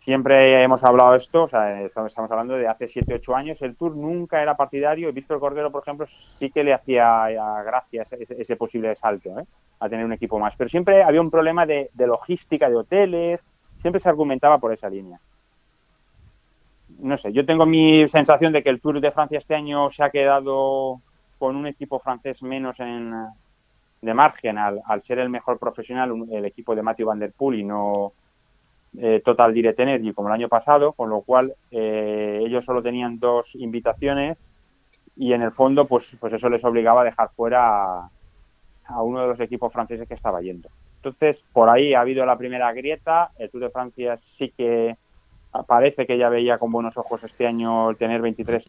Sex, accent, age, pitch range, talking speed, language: male, Spanish, 30-49, 115-135 Hz, 200 wpm, Spanish